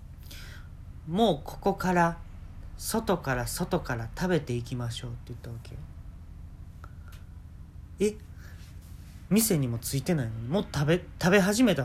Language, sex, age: Japanese, male, 40-59